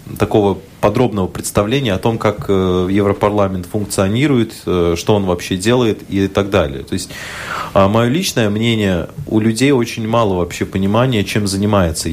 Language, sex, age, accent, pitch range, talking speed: Russian, male, 30-49, native, 90-110 Hz, 140 wpm